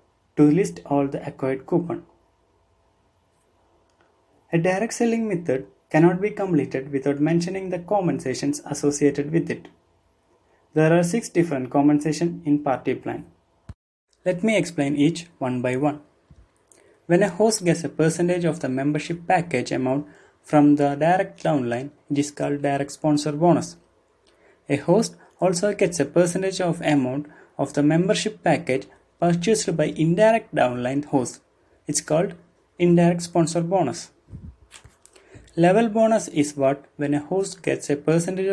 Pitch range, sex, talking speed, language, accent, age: 140-175 Hz, male, 135 wpm, English, Indian, 30-49